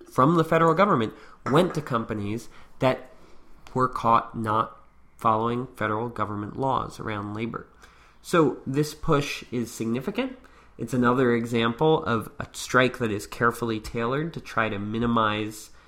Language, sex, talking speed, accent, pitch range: English, male, 135 wpm, American, 105-120 Hz